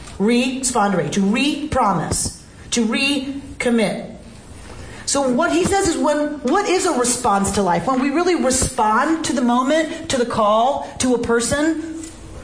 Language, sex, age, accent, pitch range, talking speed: English, female, 40-59, American, 195-295 Hz, 145 wpm